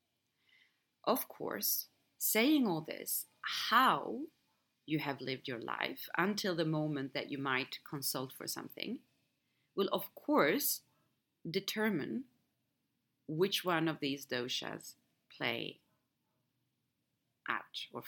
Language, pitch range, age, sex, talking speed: English, 140-190 Hz, 30-49, female, 105 wpm